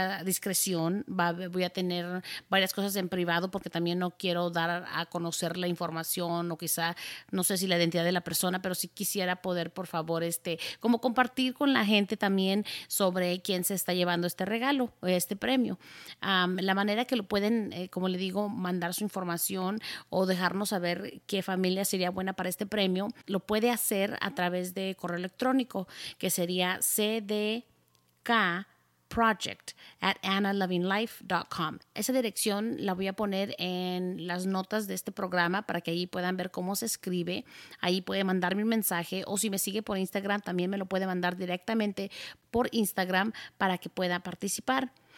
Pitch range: 180-205 Hz